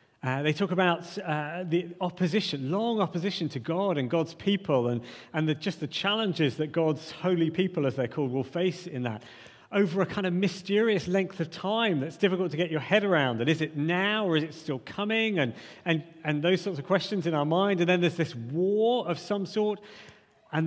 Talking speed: 215 wpm